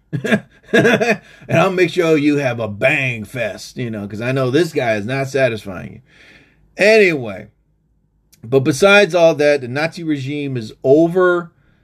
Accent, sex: American, male